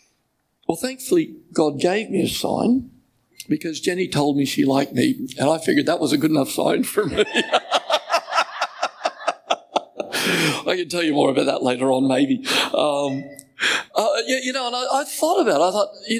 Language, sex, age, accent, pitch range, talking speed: English, male, 60-79, American, 175-270 Hz, 180 wpm